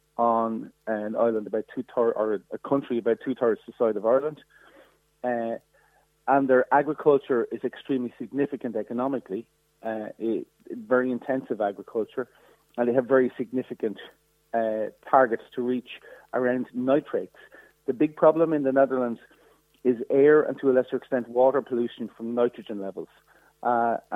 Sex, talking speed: male, 145 wpm